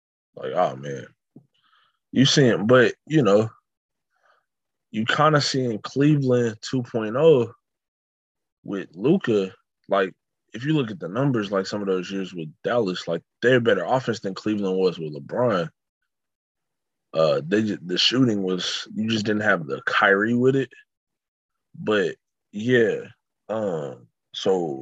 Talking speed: 140 wpm